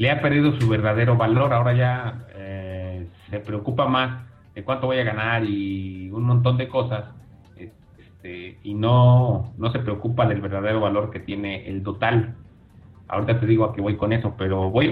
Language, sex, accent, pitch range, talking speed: Spanish, male, Mexican, 105-125 Hz, 180 wpm